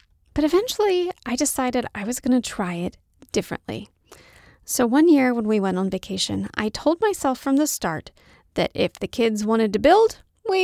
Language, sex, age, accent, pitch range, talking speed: English, female, 30-49, American, 215-315 Hz, 185 wpm